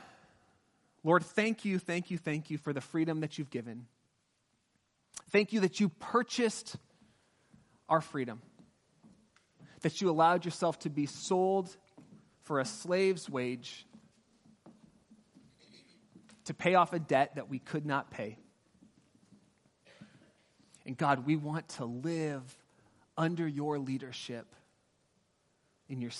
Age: 30-49